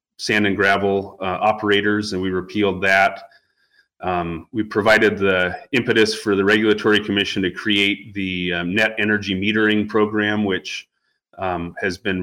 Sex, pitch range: male, 95-115 Hz